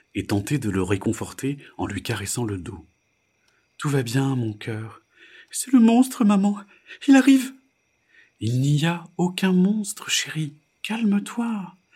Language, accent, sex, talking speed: French, French, male, 140 wpm